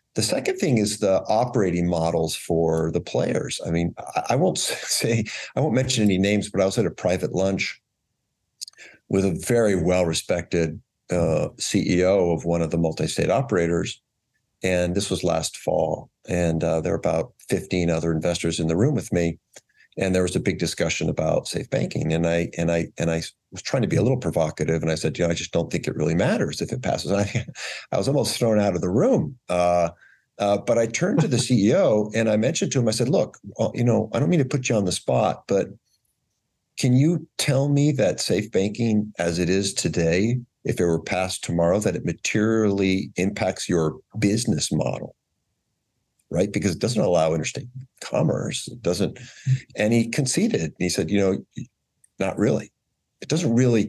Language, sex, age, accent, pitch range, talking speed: English, male, 50-69, American, 85-115 Hz, 200 wpm